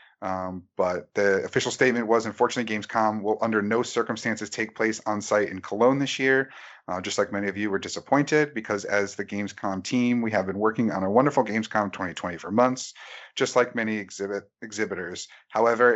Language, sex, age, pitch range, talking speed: English, male, 30-49, 100-115 Hz, 185 wpm